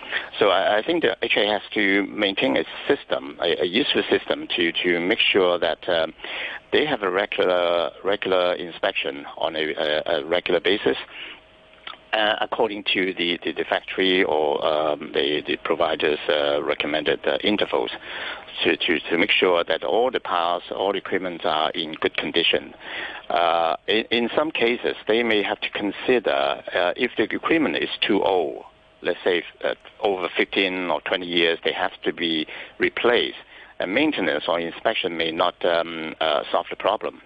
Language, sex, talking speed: English, male, 165 wpm